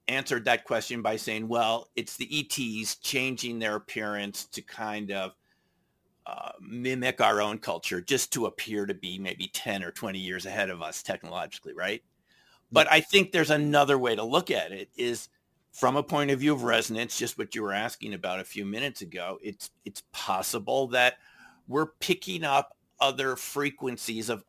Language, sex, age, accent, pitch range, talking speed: English, male, 50-69, American, 105-135 Hz, 180 wpm